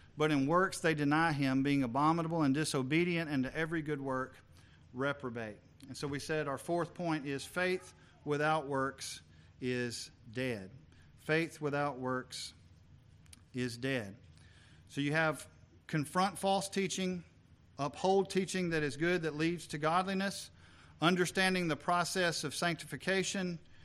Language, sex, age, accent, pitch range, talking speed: English, male, 40-59, American, 130-165 Hz, 135 wpm